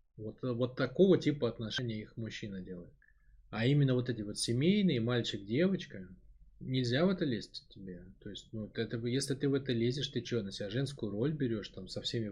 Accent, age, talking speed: native, 20-39, 195 wpm